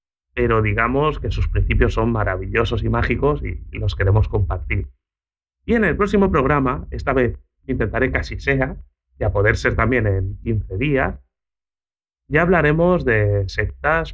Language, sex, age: Spanish, male, 30-49